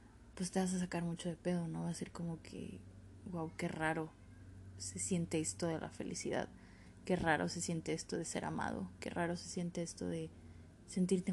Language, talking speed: Spanish, 200 wpm